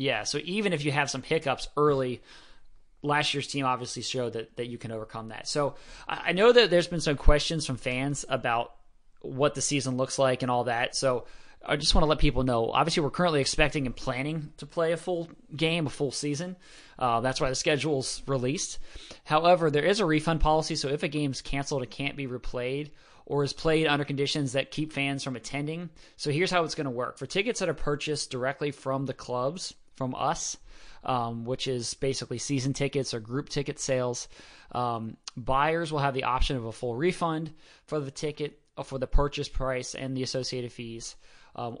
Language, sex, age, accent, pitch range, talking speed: English, male, 20-39, American, 130-150 Hz, 205 wpm